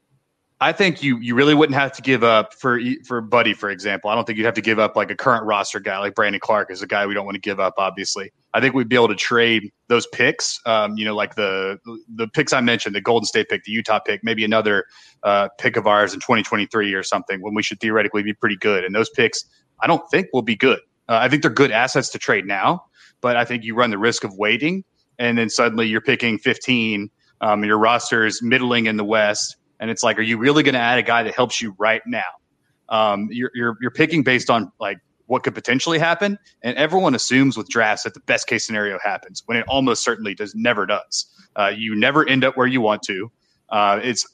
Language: English